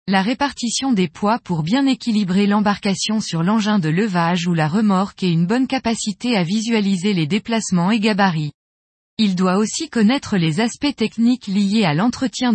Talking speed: 165 wpm